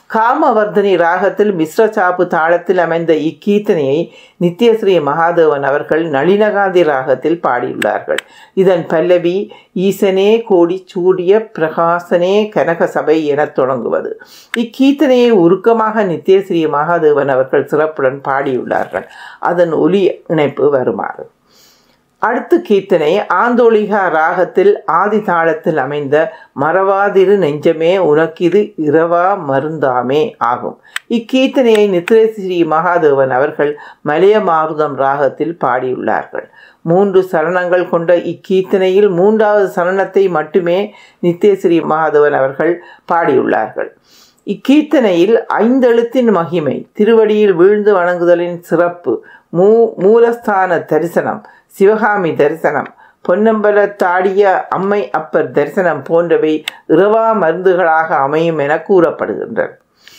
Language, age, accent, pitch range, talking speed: Tamil, 60-79, native, 160-215 Hz, 85 wpm